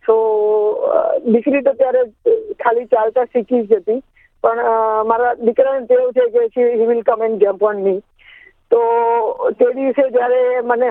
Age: 20-39